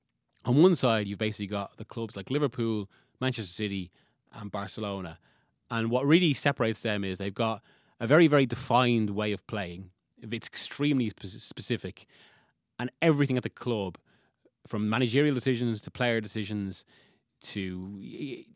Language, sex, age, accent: English, male, 30-49, British